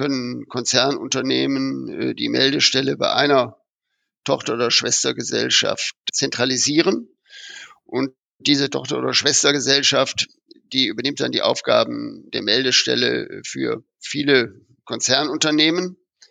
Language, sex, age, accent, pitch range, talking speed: German, male, 50-69, German, 125-175 Hz, 90 wpm